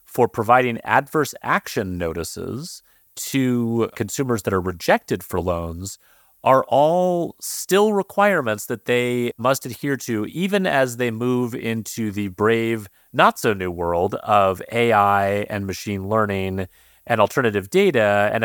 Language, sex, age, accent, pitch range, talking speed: English, male, 30-49, American, 95-130 Hz, 125 wpm